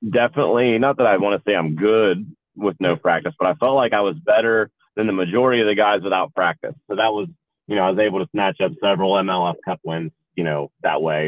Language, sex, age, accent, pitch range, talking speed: English, male, 30-49, American, 90-110 Hz, 245 wpm